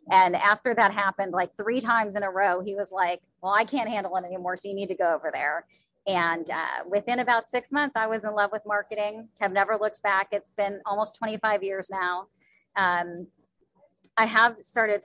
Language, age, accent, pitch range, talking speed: English, 30-49, American, 180-220 Hz, 205 wpm